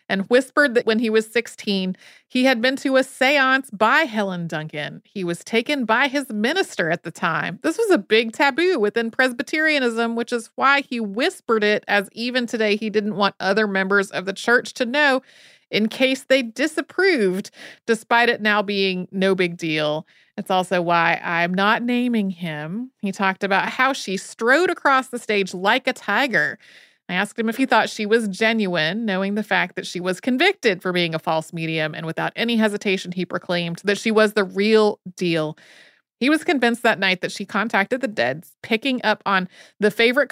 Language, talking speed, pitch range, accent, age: English, 190 wpm, 190-250 Hz, American, 30-49